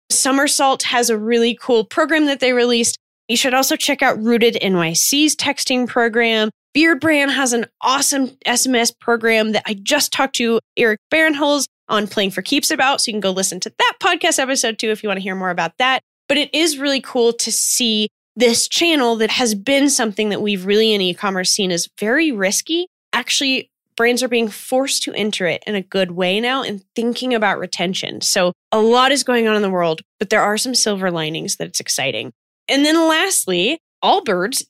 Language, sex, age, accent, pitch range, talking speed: English, female, 10-29, American, 215-280 Hz, 200 wpm